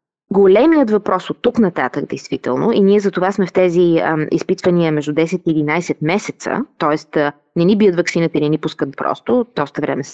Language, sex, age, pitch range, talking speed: Bulgarian, female, 20-39, 165-220 Hz, 190 wpm